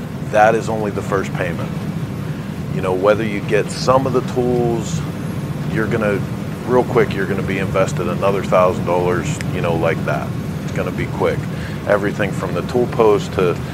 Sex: male